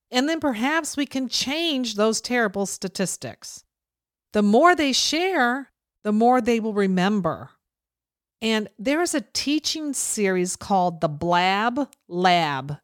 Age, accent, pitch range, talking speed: 50-69, American, 180-250 Hz, 130 wpm